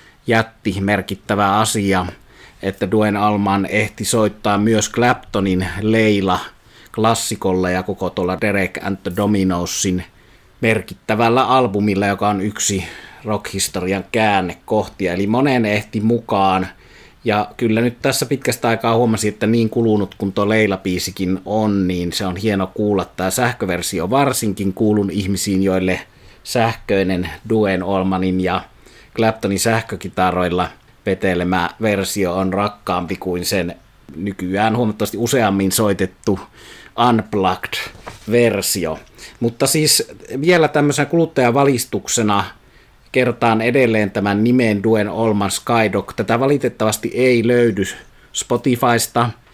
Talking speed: 110 wpm